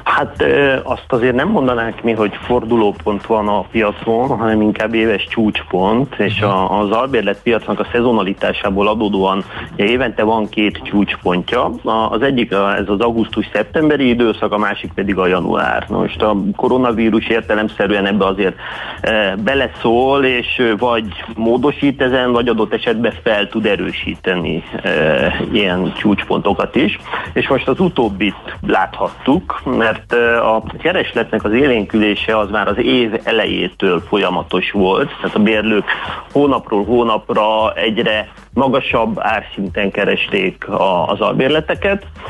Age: 30-49